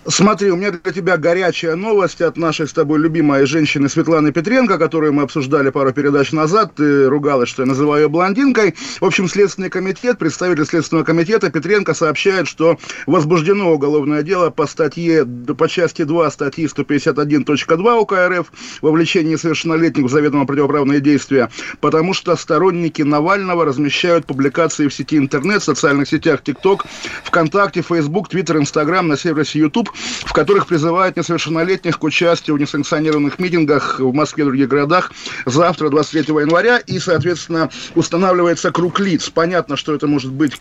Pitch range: 150-180 Hz